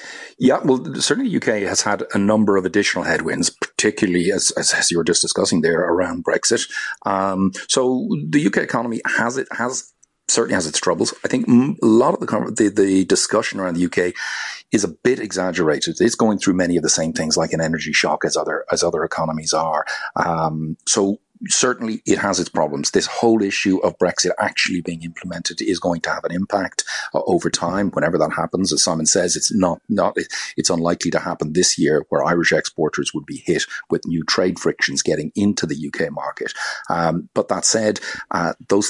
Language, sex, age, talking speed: English, male, 40-59, 195 wpm